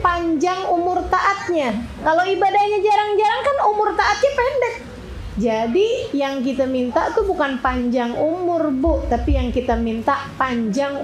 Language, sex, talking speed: Indonesian, female, 130 wpm